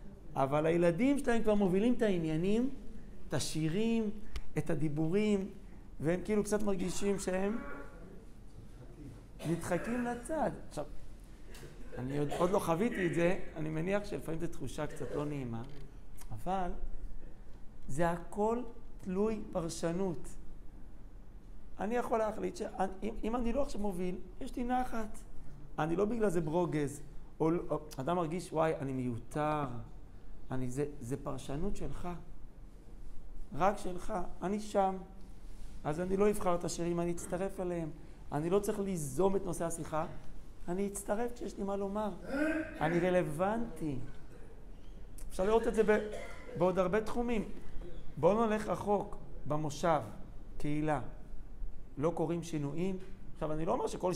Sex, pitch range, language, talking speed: male, 150-205 Hz, Hebrew, 130 wpm